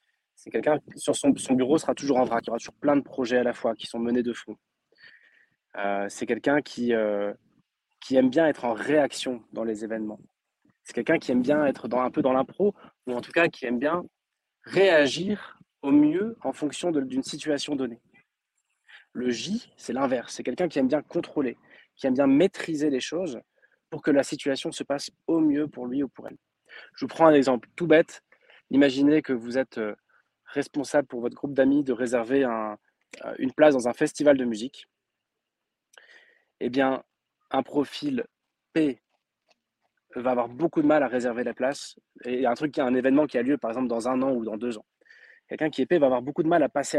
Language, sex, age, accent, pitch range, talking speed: French, male, 20-39, French, 125-160 Hz, 210 wpm